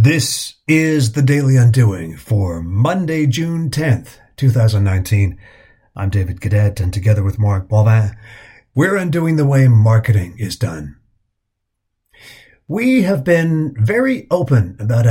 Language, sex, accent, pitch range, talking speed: English, male, American, 110-155 Hz, 125 wpm